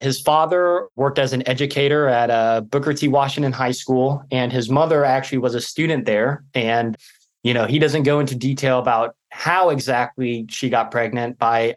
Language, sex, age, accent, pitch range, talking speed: English, male, 20-39, American, 115-140 Hz, 185 wpm